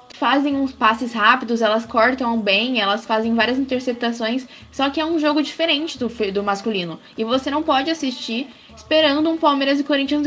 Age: 10-29